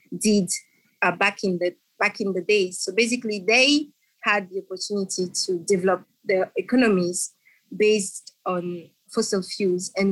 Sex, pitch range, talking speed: female, 185-220 Hz, 140 wpm